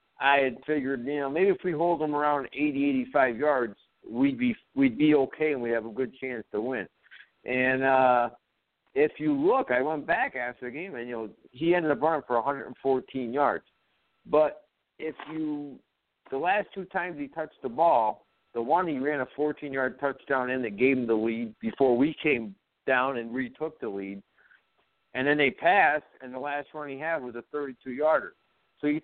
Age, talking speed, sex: 50-69, 200 wpm, male